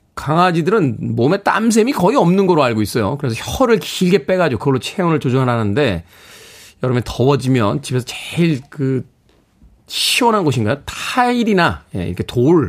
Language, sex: Korean, male